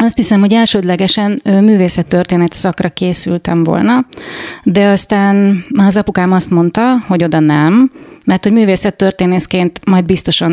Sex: female